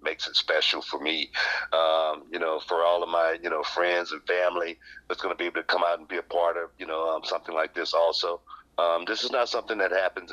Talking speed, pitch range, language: 255 wpm, 80-90 Hz, English